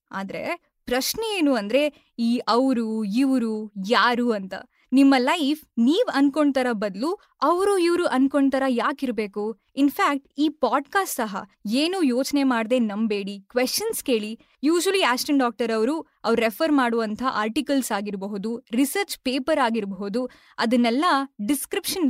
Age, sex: 20-39, female